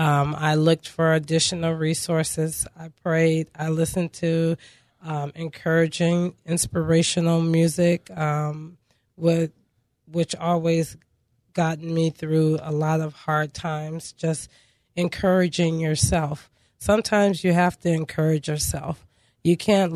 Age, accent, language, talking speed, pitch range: 20-39, American, English, 115 wpm, 155-175 Hz